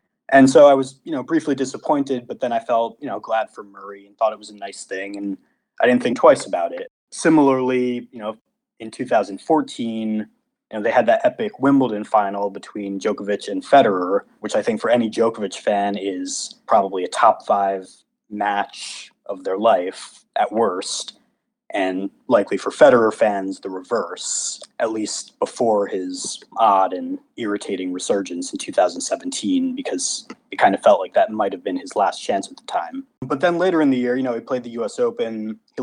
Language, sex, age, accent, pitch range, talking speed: English, male, 20-39, American, 105-150 Hz, 190 wpm